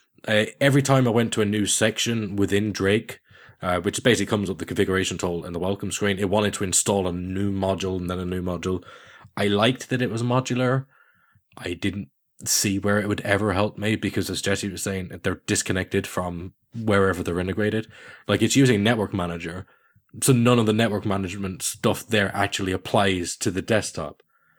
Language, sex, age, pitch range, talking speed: English, male, 20-39, 95-120 Hz, 195 wpm